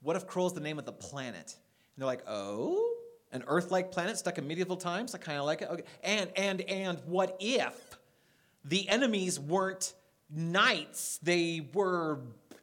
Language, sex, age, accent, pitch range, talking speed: English, male, 30-49, American, 140-185 Hz, 170 wpm